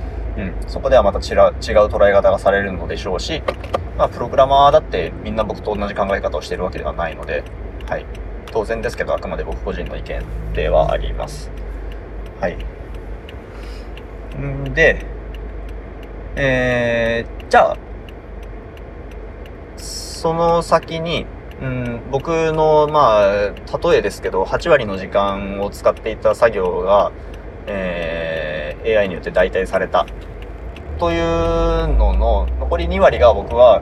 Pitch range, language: 70-110 Hz, Japanese